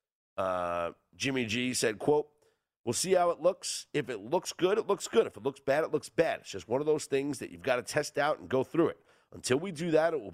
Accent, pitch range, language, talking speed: American, 105-145 Hz, English, 265 wpm